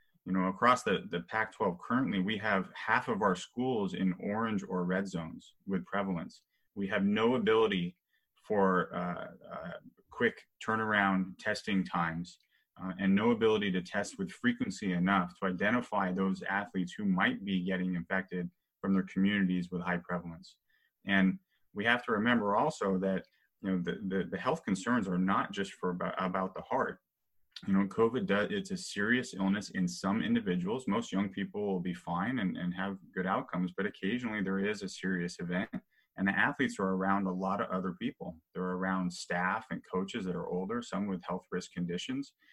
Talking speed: 180 wpm